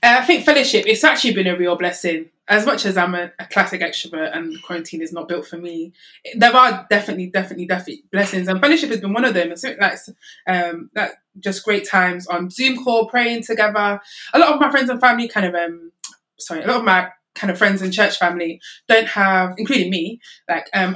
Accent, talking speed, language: British, 220 wpm, English